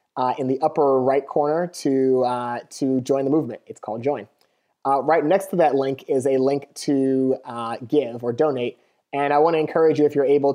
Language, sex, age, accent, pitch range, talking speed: English, male, 30-49, American, 130-145 Hz, 215 wpm